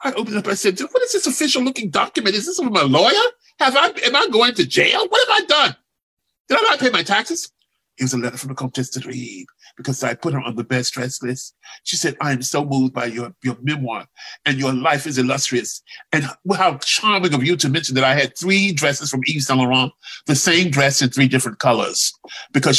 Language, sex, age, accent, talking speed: English, male, 40-59, American, 235 wpm